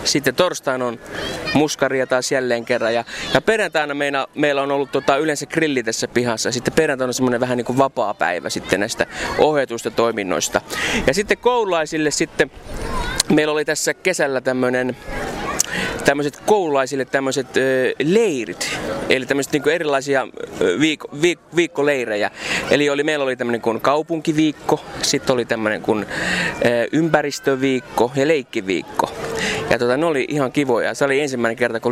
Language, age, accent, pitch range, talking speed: Finnish, 20-39, native, 120-155 Hz, 140 wpm